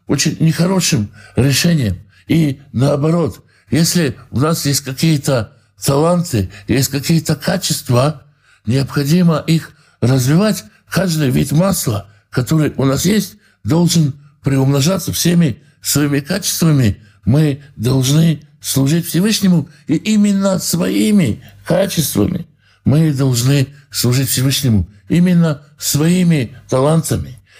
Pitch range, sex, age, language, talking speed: 130-165 Hz, male, 60-79, Russian, 95 wpm